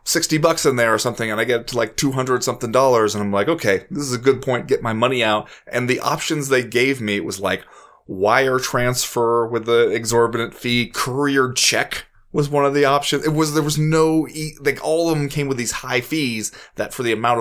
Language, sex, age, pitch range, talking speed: English, male, 20-39, 105-130 Hz, 235 wpm